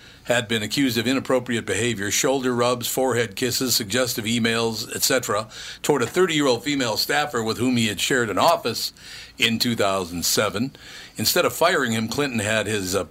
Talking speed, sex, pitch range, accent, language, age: 160 wpm, male, 110-125 Hz, American, English, 50-69